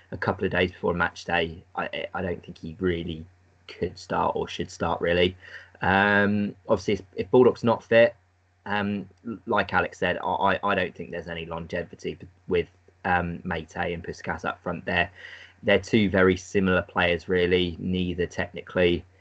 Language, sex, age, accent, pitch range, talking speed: English, male, 20-39, British, 90-95 Hz, 165 wpm